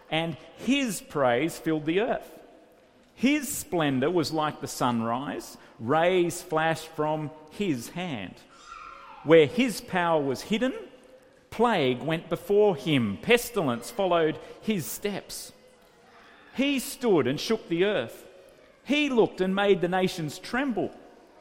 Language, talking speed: English, 120 wpm